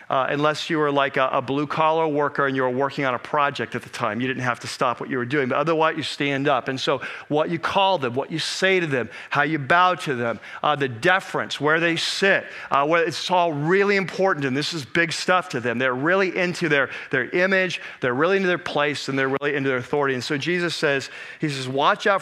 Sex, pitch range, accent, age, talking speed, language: male, 140-170 Hz, American, 40-59, 250 wpm, English